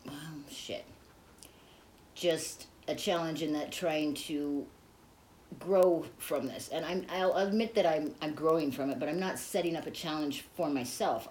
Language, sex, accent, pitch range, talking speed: English, female, American, 130-165 Hz, 165 wpm